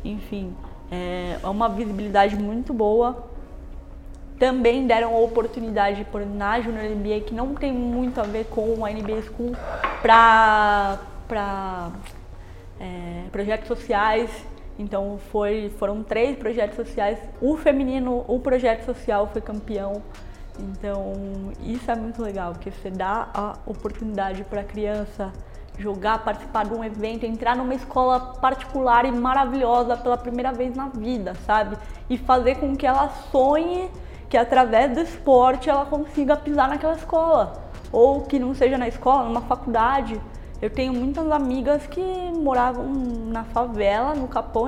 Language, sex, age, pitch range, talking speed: Portuguese, female, 10-29, 210-265 Hz, 135 wpm